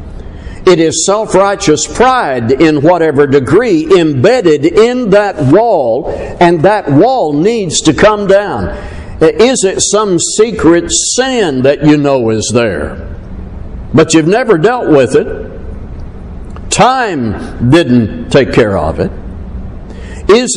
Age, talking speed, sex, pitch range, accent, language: 60-79, 125 wpm, male, 135-215 Hz, American, English